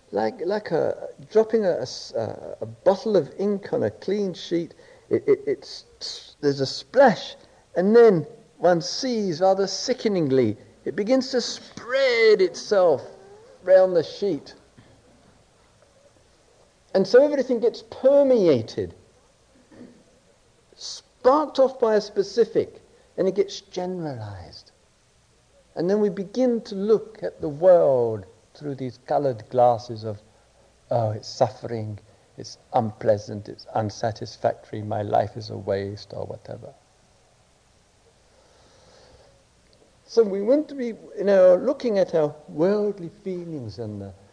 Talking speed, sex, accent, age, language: 120 wpm, male, British, 50-69, English